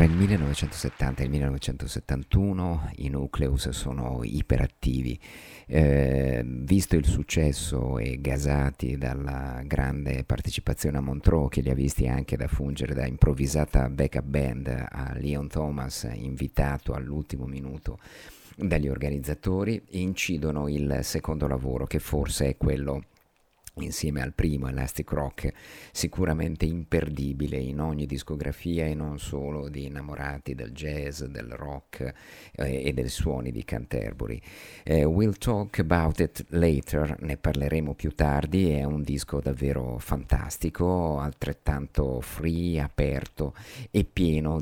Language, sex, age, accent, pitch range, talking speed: Italian, male, 50-69, native, 70-80 Hz, 125 wpm